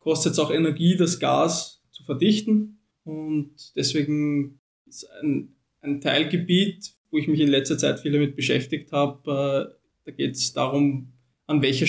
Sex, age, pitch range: male, 20-39, 130-155 Hz